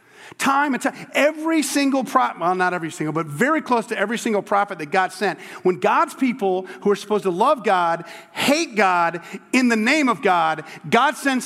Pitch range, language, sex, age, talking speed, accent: 195-285 Hz, English, male, 40-59, 200 wpm, American